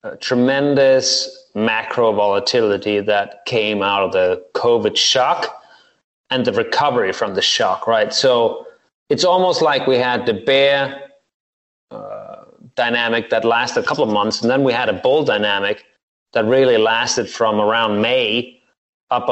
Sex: male